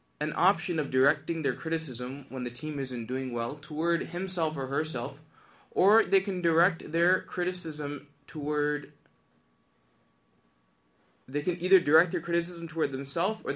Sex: male